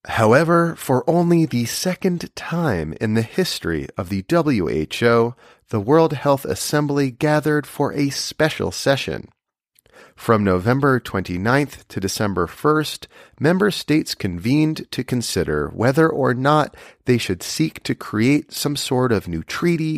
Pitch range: 110-150 Hz